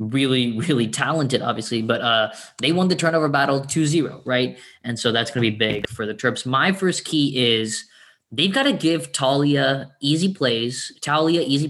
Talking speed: 185 wpm